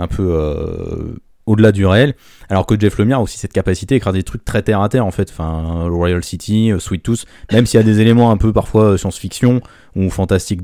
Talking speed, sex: 225 wpm, male